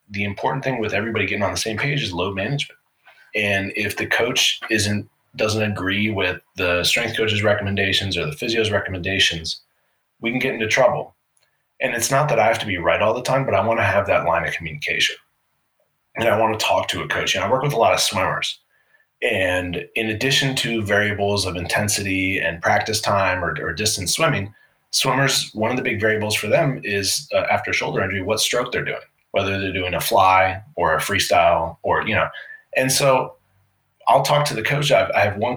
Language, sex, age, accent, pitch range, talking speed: English, male, 20-39, American, 95-120 Hz, 210 wpm